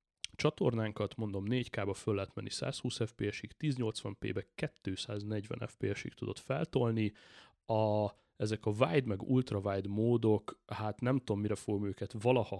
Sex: male